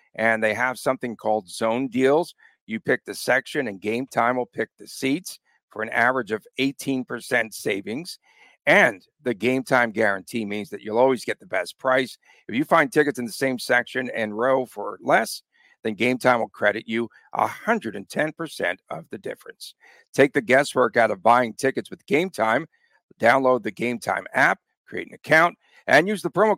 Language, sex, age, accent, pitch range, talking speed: English, male, 50-69, American, 110-135 Hz, 185 wpm